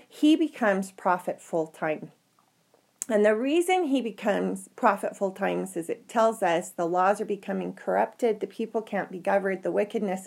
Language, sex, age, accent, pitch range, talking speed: English, female, 30-49, American, 185-230 Hz, 170 wpm